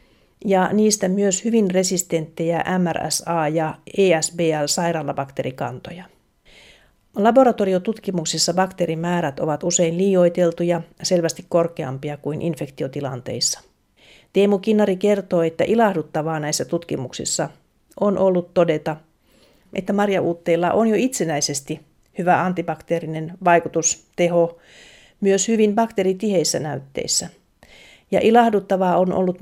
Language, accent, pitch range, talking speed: Finnish, native, 170-205 Hz, 90 wpm